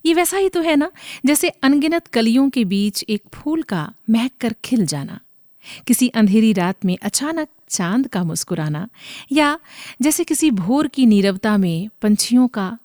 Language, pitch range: Hindi, 190-270 Hz